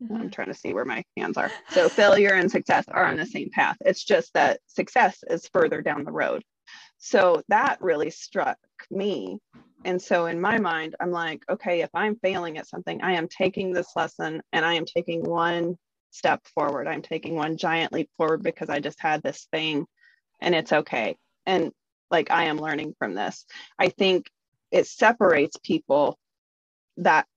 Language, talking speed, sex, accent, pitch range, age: English, 185 wpm, female, American, 160-190 Hz, 30-49